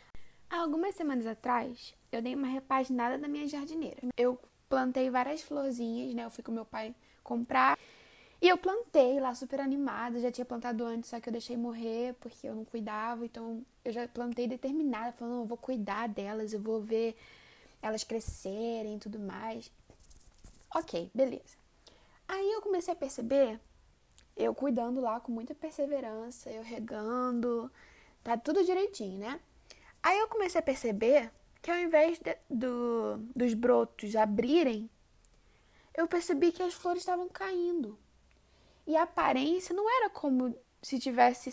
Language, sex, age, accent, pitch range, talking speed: Portuguese, female, 10-29, Brazilian, 235-315 Hz, 155 wpm